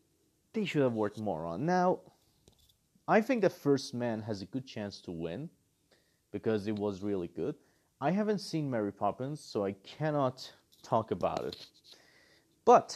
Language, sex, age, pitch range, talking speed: English, male, 30-49, 115-170 Hz, 160 wpm